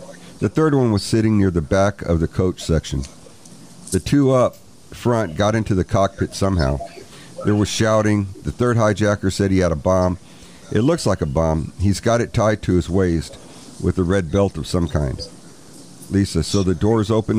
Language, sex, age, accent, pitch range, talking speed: English, male, 50-69, American, 85-110 Hz, 195 wpm